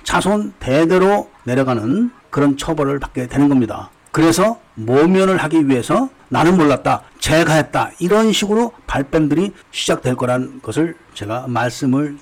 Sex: male